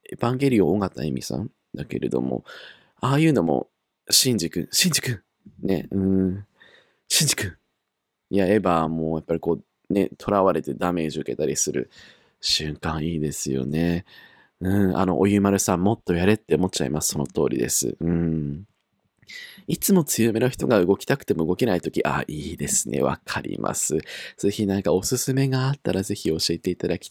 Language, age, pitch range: Japanese, 20-39, 85-110 Hz